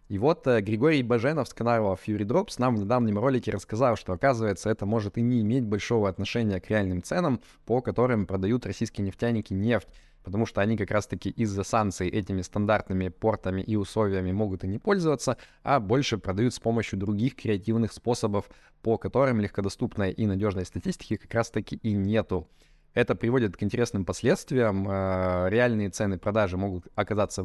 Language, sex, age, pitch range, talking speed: Russian, male, 20-39, 95-120 Hz, 170 wpm